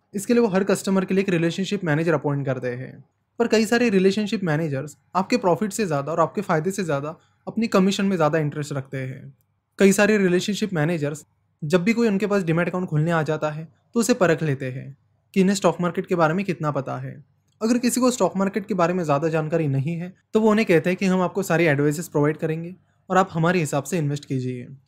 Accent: native